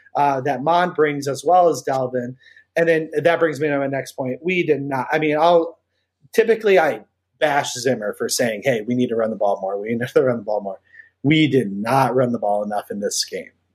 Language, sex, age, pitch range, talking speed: English, male, 30-49, 135-175 Hz, 235 wpm